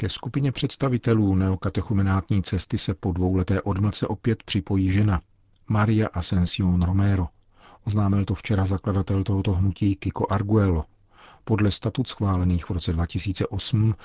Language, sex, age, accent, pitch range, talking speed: Czech, male, 50-69, native, 90-105 Hz, 125 wpm